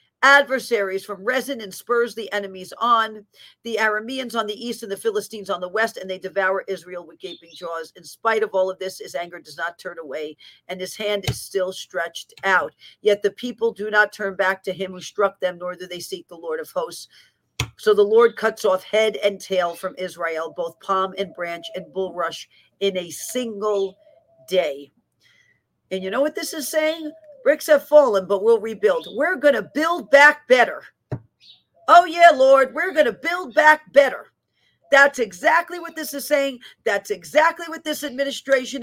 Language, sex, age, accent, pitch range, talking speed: English, female, 50-69, American, 195-290 Hz, 190 wpm